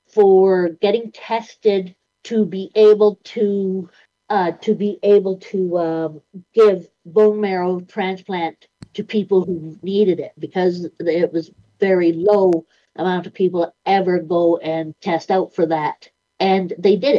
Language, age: English, 50-69